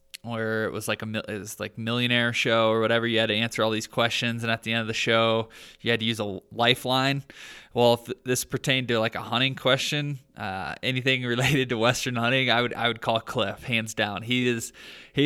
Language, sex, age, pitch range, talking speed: English, male, 20-39, 115-125 Hz, 230 wpm